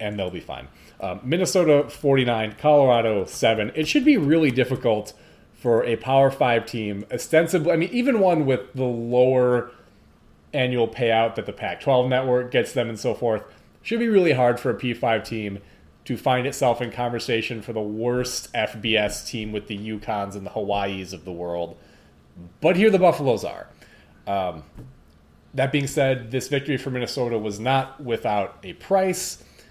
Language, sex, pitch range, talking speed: English, male, 105-130 Hz, 170 wpm